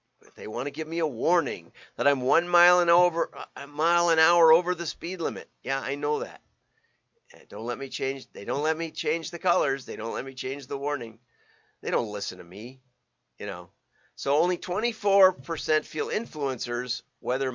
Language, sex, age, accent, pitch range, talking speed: English, male, 50-69, American, 125-170 Hz, 180 wpm